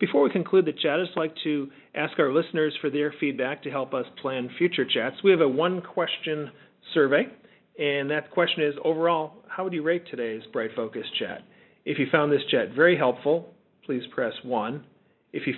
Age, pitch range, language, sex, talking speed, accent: 40-59, 130-170 Hz, English, male, 195 wpm, American